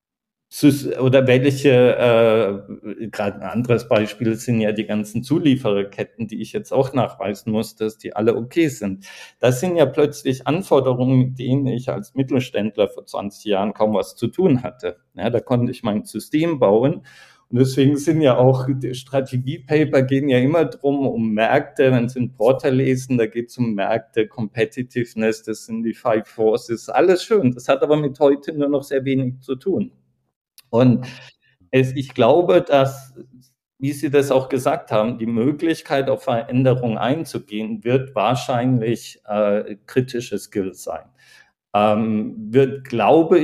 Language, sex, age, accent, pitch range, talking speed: German, male, 50-69, German, 115-140 Hz, 160 wpm